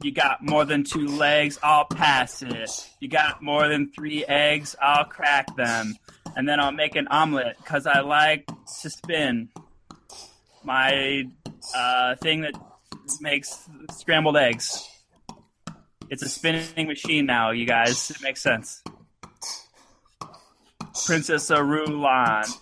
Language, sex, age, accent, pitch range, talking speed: English, male, 20-39, American, 135-150 Hz, 125 wpm